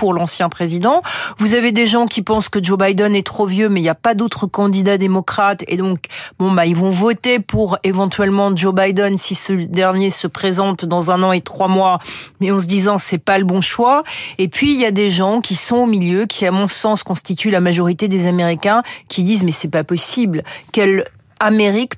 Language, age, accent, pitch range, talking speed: French, 40-59, French, 175-210 Hz, 220 wpm